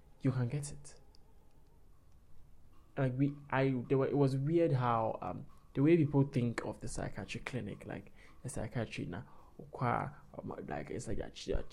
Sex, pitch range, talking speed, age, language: male, 115-140 Hz, 175 wpm, 20-39, English